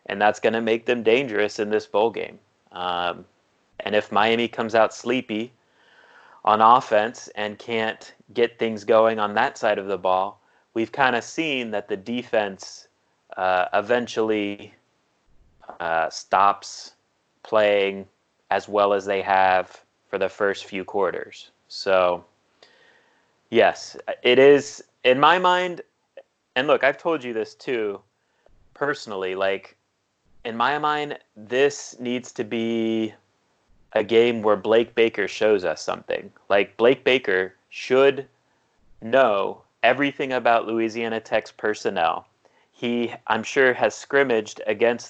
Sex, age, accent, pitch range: male, 30-49, American, 100-120 Hz